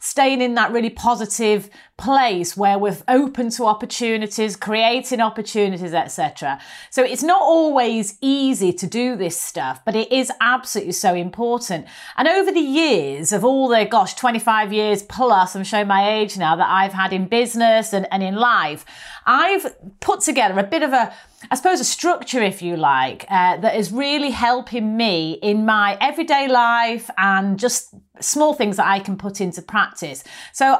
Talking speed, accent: 175 wpm, British